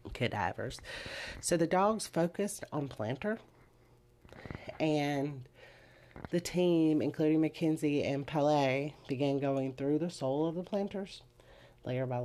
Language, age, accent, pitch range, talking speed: English, 40-59, American, 125-150 Hz, 120 wpm